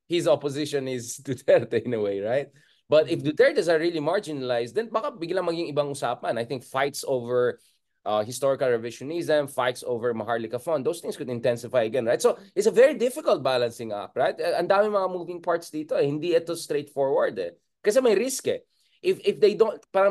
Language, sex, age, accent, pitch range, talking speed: English, male, 20-39, Filipino, 125-170 Hz, 190 wpm